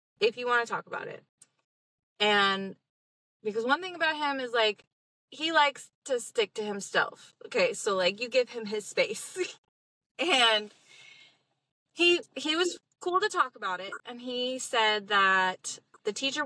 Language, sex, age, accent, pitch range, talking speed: English, female, 20-39, American, 205-265 Hz, 160 wpm